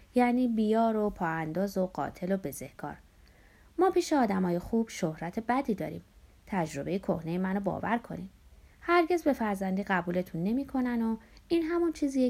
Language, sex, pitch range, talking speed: Persian, female, 170-245 Hz, 150 wpm